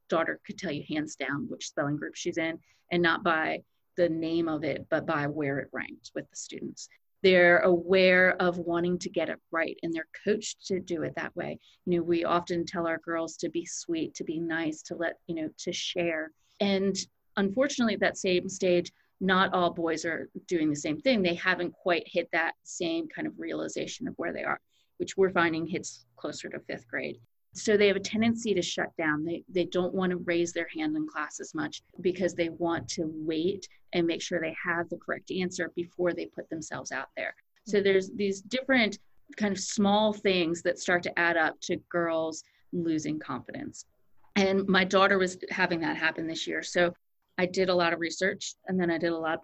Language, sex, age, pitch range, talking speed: English, female, 30-49, 165-195 Hz, 210 wpm